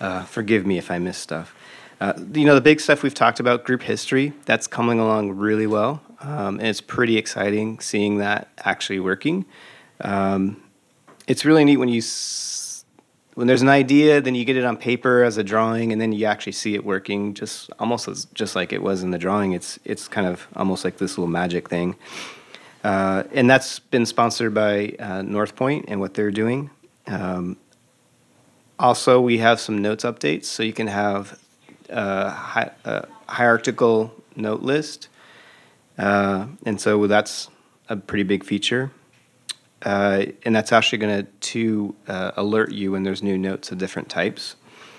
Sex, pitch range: male, 100-125 Hz